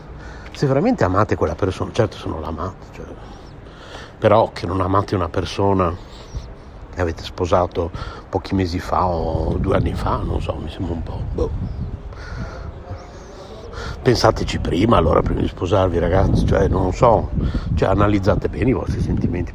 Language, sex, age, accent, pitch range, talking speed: Italian, male, 60-79, native, 85-100 Hz, 150 wpm